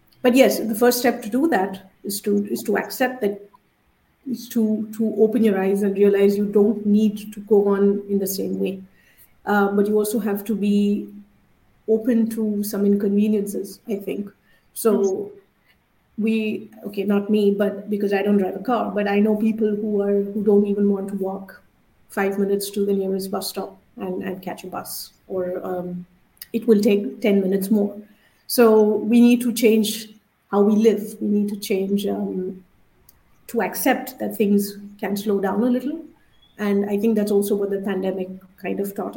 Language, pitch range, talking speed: English, 195-225 Hz, 185 wpm